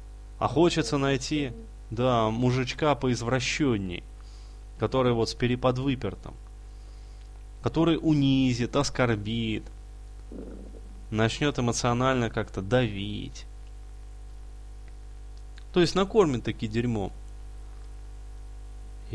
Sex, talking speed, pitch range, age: male, 70 wpm, 105-125 Hz, 20-39